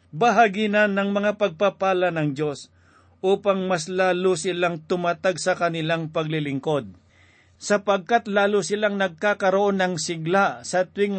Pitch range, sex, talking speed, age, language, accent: 155-195 Hz, male, 125 wpm, 50-69, Filipino, native